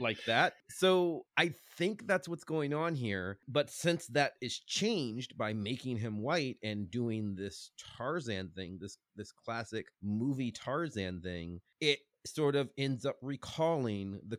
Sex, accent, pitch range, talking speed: male, American, 95-135 Hz, 155 wpm